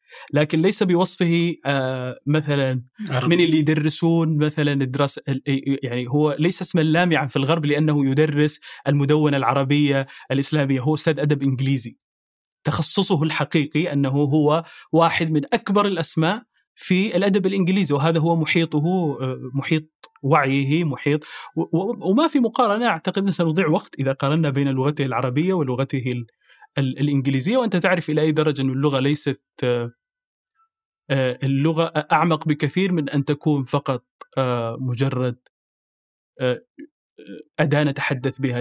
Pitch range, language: 135-165 Hz, Arabic